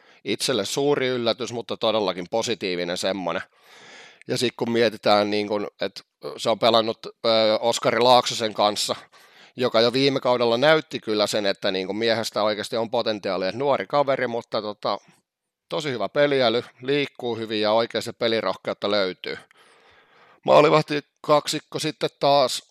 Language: Finnish